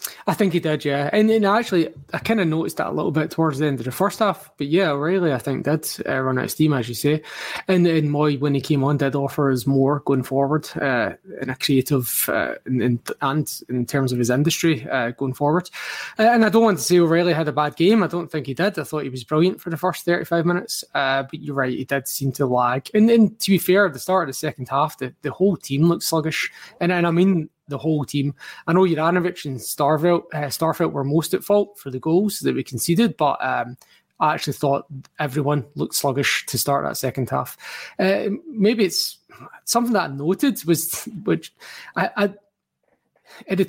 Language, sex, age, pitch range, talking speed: English, male, 20-39, 140-185 Hz, 230 wpm